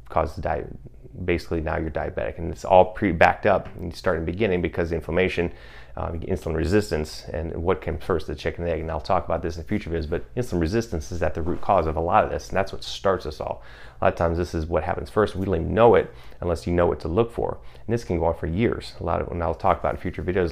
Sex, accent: male, American